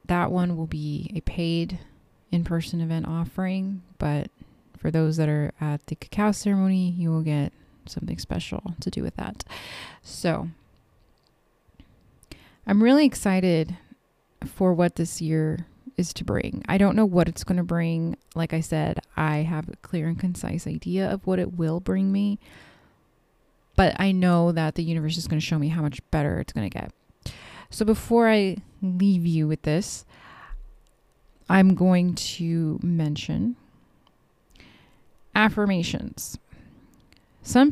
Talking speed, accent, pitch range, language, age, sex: 150 wpm, American, 160-195 Hz, English, 20-39, female